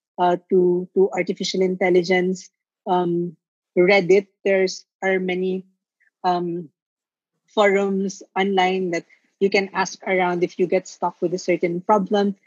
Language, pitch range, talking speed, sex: English, 180-200 Hz, 125 wpm, female